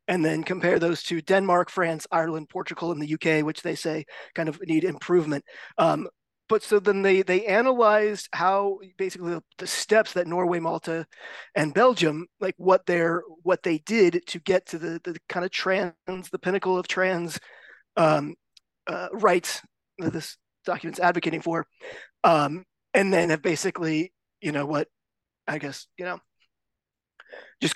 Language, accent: English, American